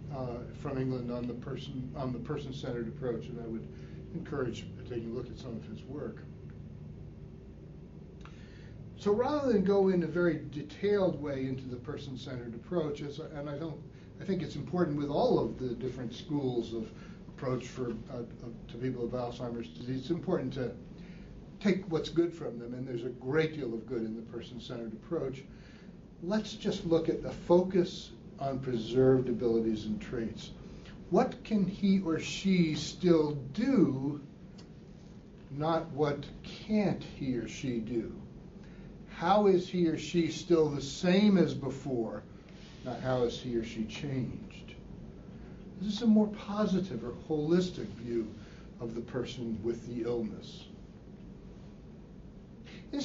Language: English